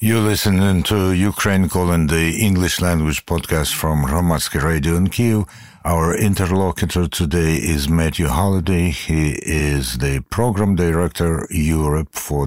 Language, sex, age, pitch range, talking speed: Ukrainian, male, 60-79, 75-95 Hz, 130 wpm